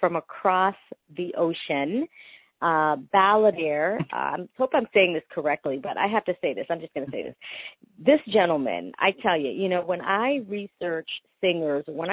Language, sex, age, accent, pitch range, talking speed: English, female, 40-59, American, 155-195 Hz, 180 wpm